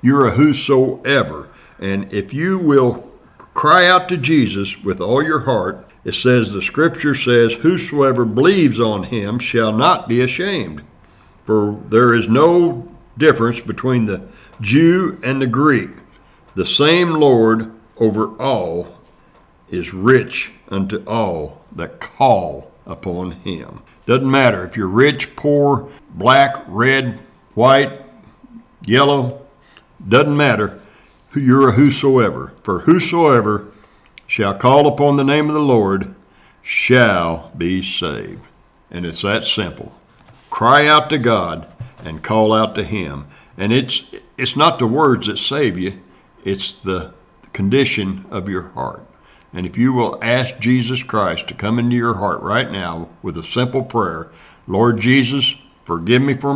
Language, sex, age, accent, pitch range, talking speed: English, male, 60-79, American, 95-140 Hz, 140 wpm